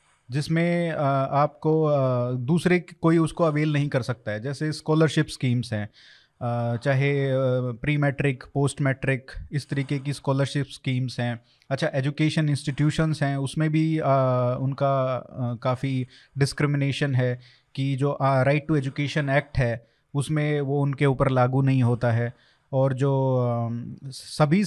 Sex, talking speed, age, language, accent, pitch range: male, 140 wpm, 30-49, Hindi, native, 130-155 Hz